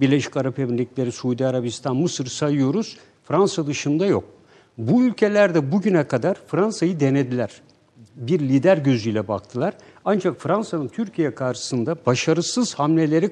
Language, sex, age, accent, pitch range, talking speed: Turkish, male, 60-79, native, 135-185 Hz, 120 wpm